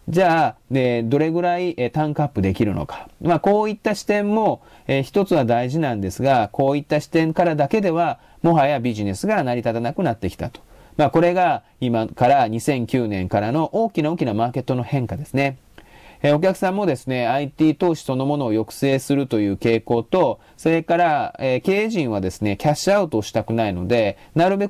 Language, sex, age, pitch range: Japanese, male, 40-59, 115-165 Hz